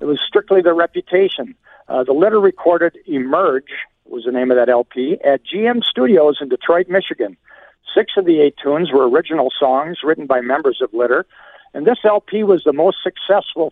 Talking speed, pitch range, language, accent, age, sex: 185 wpm, 155-210 Hz, English, American, 60-79, male